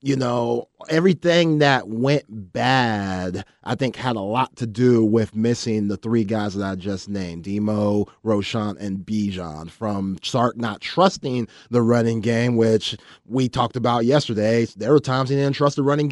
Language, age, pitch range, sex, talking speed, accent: English, 30-49, 110-130 Hz, male, 170 wpm, American